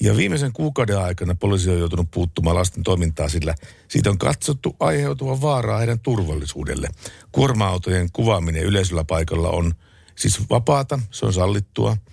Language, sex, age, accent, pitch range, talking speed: Finnish, male, 60-79, native, 85-115 Hz, 140 wpm